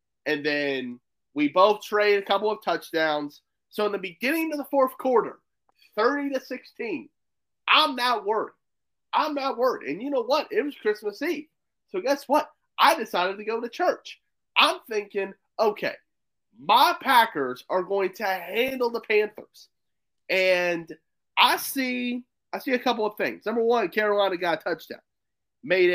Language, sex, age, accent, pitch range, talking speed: English, male, 30-49, American, 185-265 Hz, 160 wpm